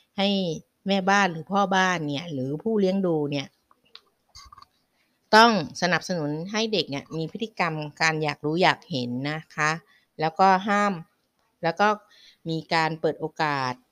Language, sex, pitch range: Thai, female, 150-195 Hz